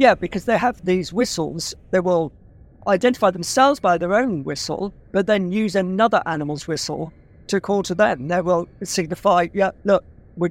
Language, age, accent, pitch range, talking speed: English, 50-69, British, 155-195 Hz, 170 wpm